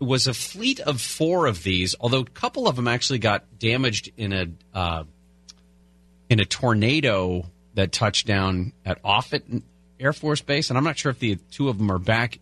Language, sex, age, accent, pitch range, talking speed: English, male, 30-49, American, 90-125 Hz, 195 wpm